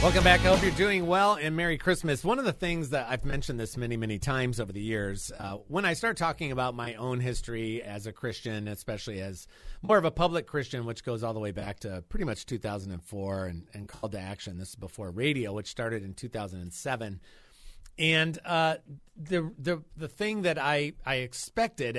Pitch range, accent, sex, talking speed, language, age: 110-155 Hz, American, male, 205 wpm, English, 40-59